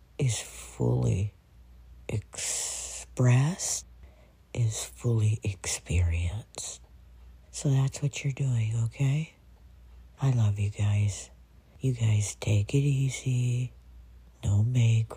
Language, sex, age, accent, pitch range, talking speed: English, female, 60-79, American, 80-115 Hz, 90 wpm